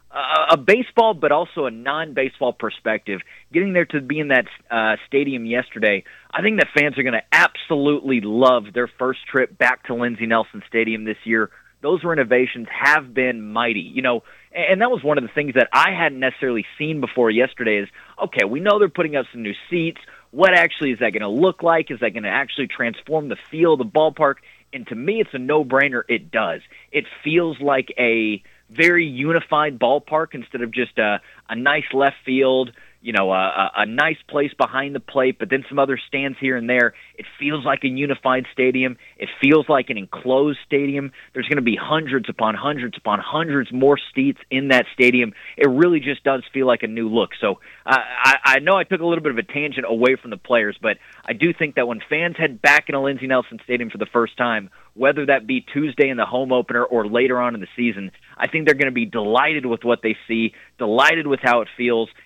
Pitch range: 120-150 Hz